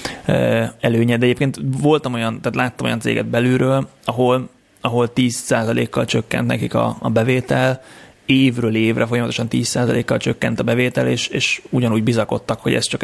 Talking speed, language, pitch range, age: 145 wpm, Hungarian, 105-125 Hz, 30-49